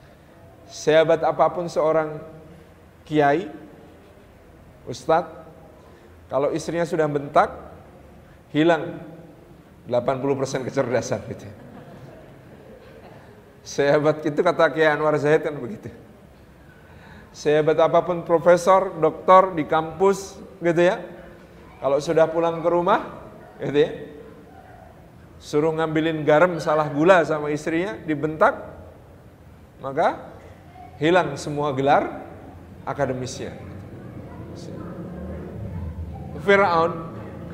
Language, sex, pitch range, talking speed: Indonesian, male, 150-180 Hz, 80 wpm